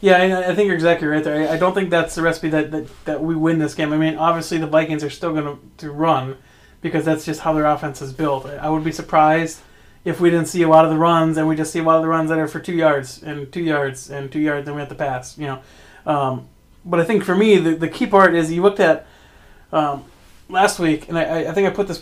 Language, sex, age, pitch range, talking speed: English, male, 30-49, 150-175 Hz, 285 wpm